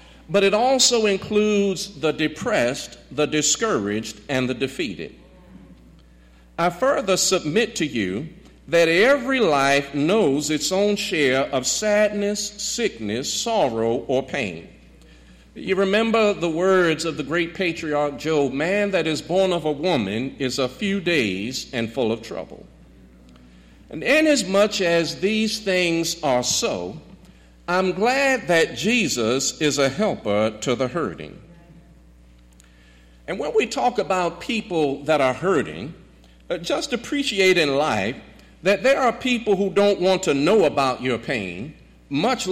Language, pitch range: English, 140-205 Hz